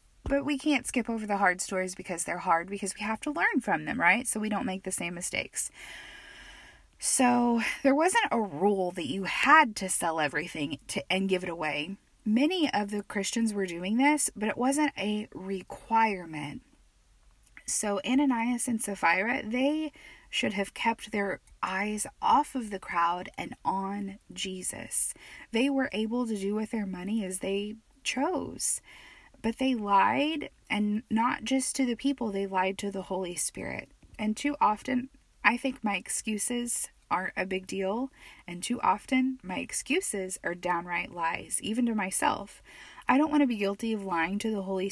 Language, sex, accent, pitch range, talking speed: English, female, American, 190-260 Hz, 175 wpm